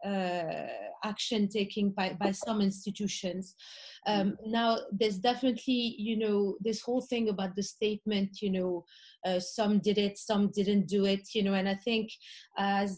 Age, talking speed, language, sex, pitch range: 30-49, 160 wpm, English, female, 195-225 Hz